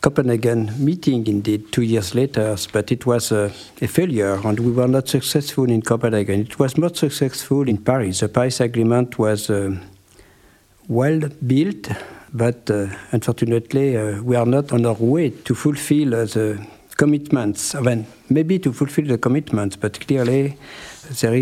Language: French